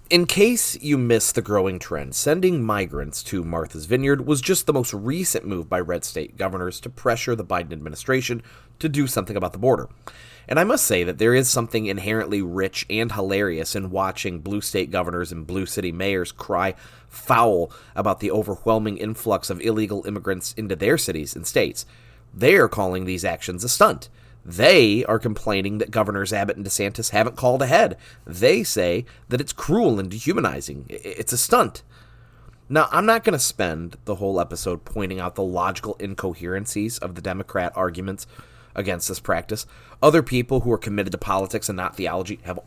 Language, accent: English, American